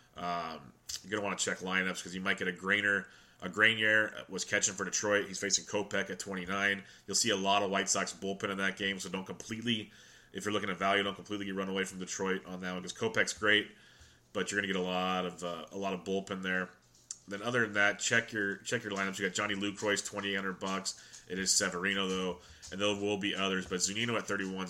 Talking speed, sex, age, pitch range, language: 240 wpm, male, 30-49, 95-100 Hz, English